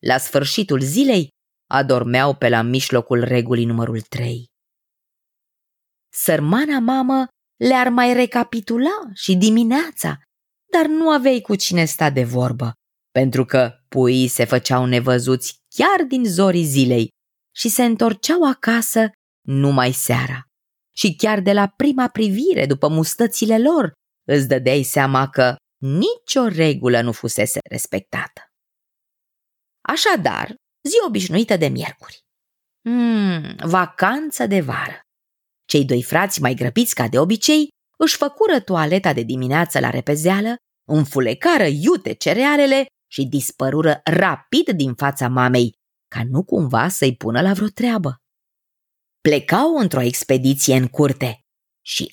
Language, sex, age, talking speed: Romanian, female, 20-39, 120 wpm